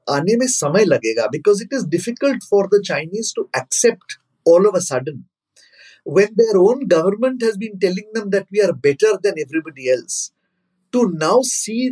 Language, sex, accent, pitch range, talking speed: Hindi, male, native, 175-240 Hz, 175 wpm